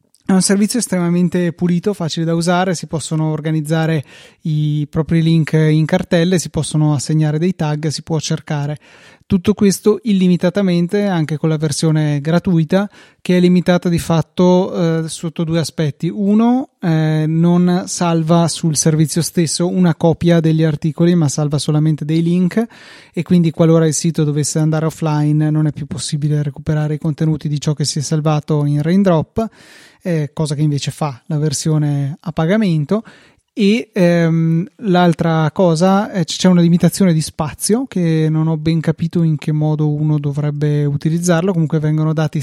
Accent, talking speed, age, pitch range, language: native, 160 wpm, 20-39, 155-180 Hz, Italian